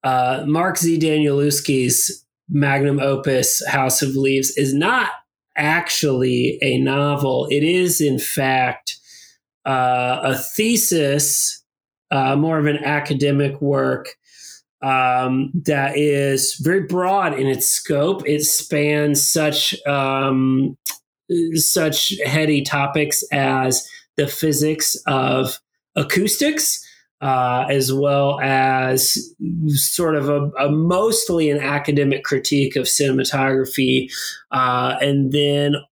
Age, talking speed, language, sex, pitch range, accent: 30-49, 105 wpm, English, male, 135-155 Hz, American